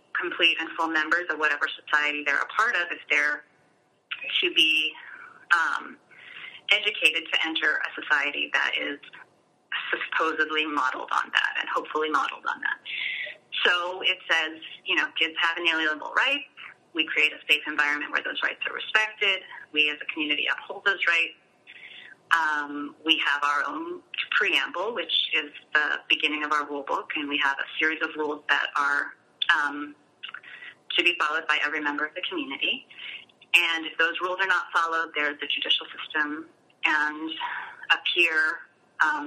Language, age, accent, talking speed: English, 30-49, American, 165 wpm